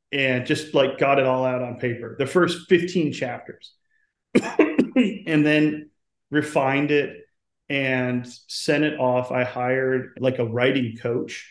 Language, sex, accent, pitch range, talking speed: English, male, American, 125-145 Hz, 140 wpm